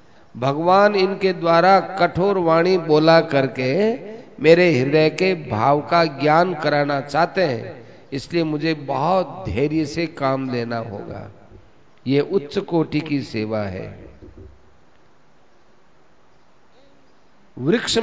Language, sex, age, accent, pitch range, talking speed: Hindi, male, 50-69, native, 130-175 Hz, 105 wpm